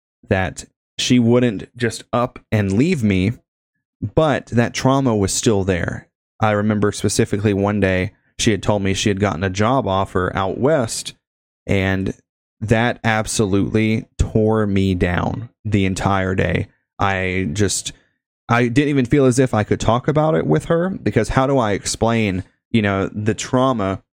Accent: American